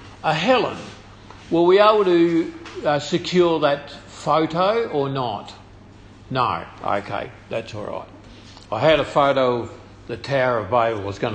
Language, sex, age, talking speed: English, male, 50-69, 155 wpm